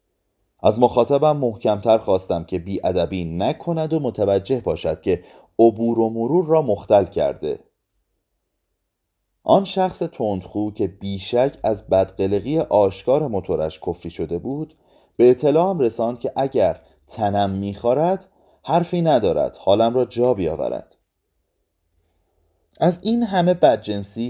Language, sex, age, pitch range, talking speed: Persian, male, 30-49, 95-135 Hz, 115 wpm